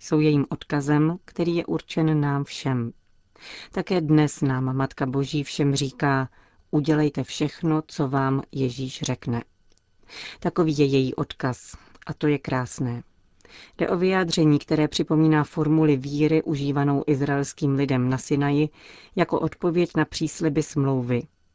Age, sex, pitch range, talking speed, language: 40-59, female, 130-155 Hz, 130 wpm, Czech